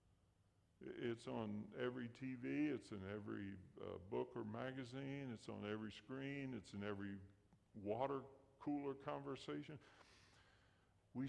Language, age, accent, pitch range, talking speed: English, 50-69, American, 95-110 Hz, 115 wpm